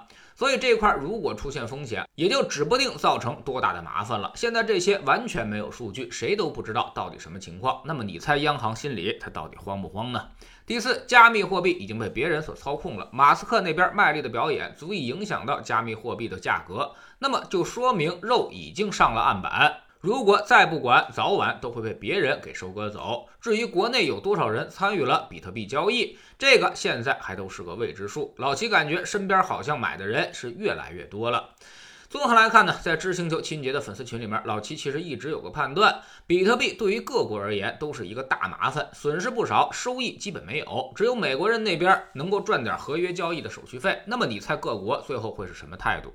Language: Chinese